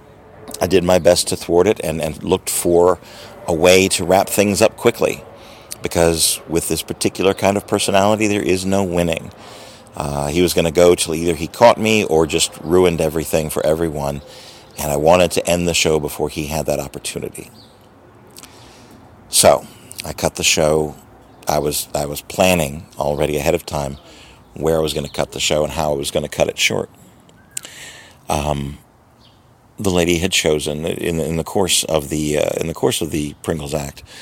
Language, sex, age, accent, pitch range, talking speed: English, male, 50-69, American, 75-85 Hz, 190 wpm